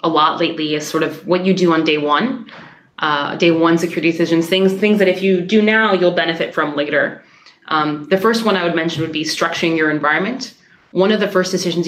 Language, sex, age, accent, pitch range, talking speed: English, female, 20-39, American, 160-190 Hz, 225 wpm